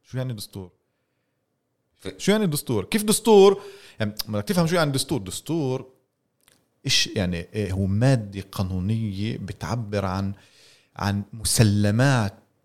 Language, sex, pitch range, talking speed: Arabic, male, 110-155 Hz, 115 wpm